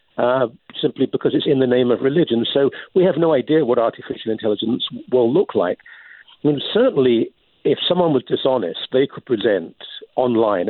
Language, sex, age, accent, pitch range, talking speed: English, male, 50-69, British, 120-165 Hz, 175 wpm